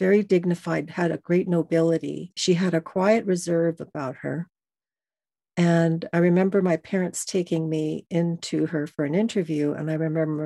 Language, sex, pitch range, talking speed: English, female, 165-210 Hz, 160 wpm